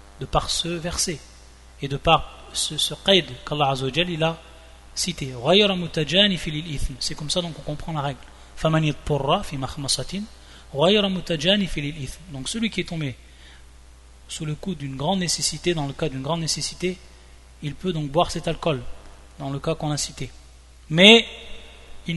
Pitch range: 100-165 Hz